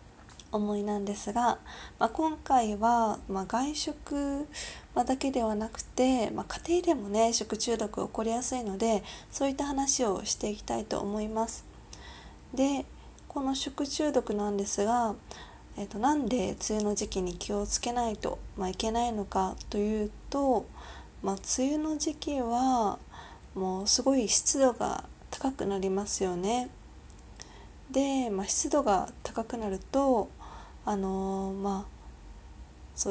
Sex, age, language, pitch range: female, 20-39, Japanese, 200-250 Hz